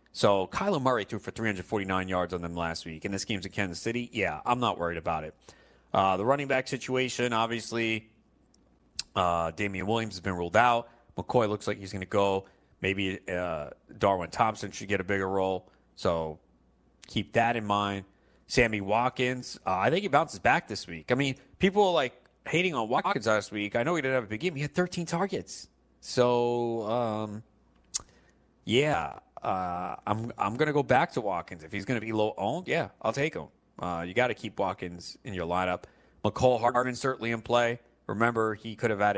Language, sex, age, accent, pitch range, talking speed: English, male, 30-49, American, 95-115 Hz, 200 wpm